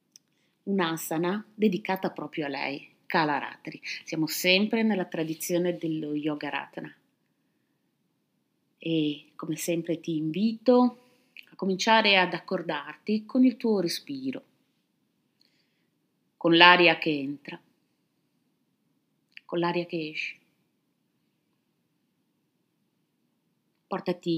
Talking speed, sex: 90 wpm, female